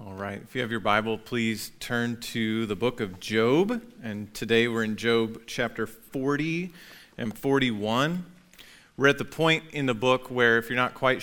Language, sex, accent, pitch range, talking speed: English, male, American, 110-135 Hz, 180 wpm